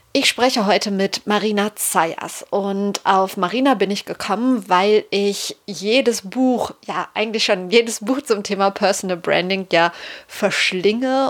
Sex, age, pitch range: female, 30-49, 190-235 Hz